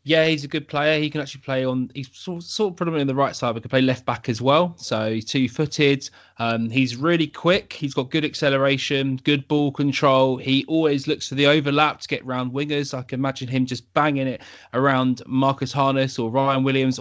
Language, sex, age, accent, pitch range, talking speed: English, male, 20-39, British, 120-150 Hz, 220 wpm